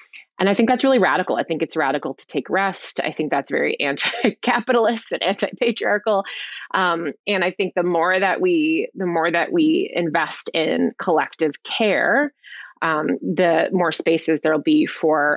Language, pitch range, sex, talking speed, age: English, 160-230 Hz, female, 170 wpm, 20-39